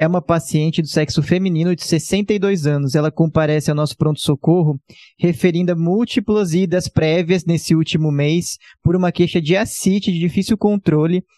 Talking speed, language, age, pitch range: 160 wpm, Portuguese, 20-39, 160-185 Hz